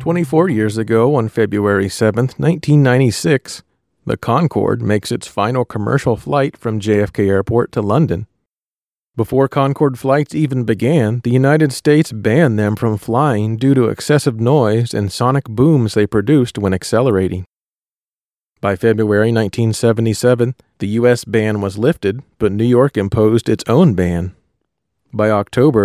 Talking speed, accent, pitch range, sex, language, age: 135 wpm, American, 105-135 Hz, male, English, 40-59